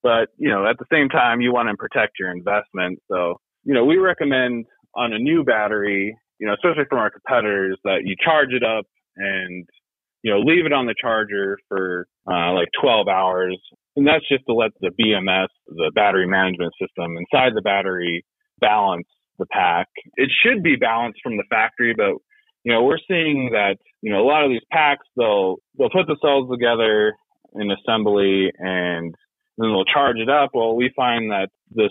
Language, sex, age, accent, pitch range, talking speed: English, male, 30-49, American, 95-130 Hz, 195 wpm